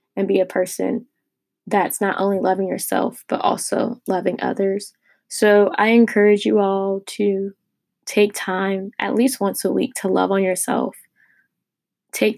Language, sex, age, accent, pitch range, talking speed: English, female, 10-29, American, 185-205 Hz, 150 wpm